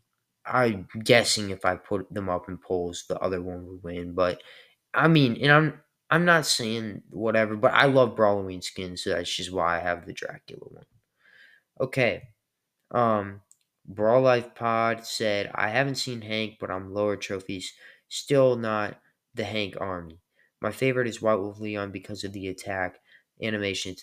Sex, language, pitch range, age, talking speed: male, English, 95-120 Hz, 20-39, 165 wpm